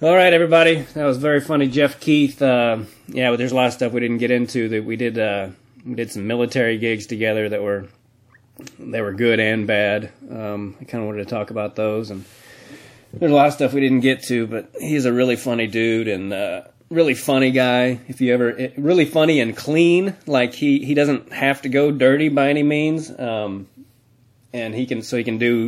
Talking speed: 220 wpm